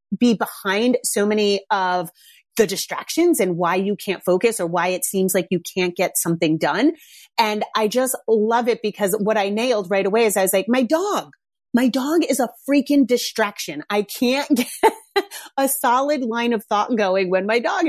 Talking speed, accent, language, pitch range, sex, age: 190 wpm, American, English, 195-245 Hz, female, 30-49